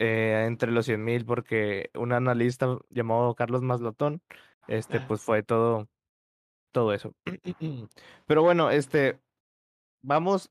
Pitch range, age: 120-160 Hz, 20-39